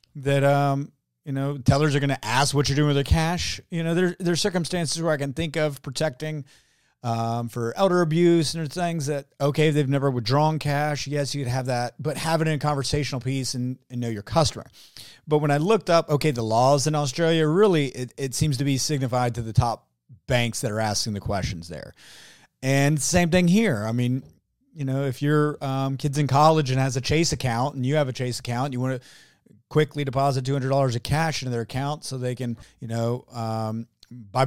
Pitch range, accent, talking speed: 120-150 Hz, American, 220 wpm